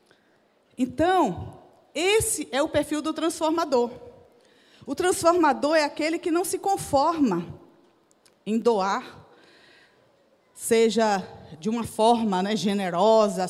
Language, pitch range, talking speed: Portuguese, 220-315 Hz, 100 wpm